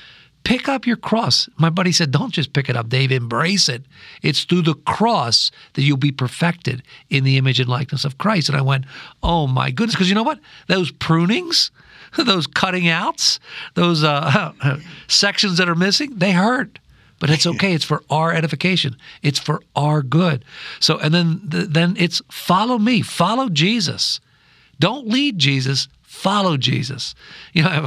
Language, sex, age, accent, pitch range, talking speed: English, male, 50-69, American, 145-180 Hz, 175 wpm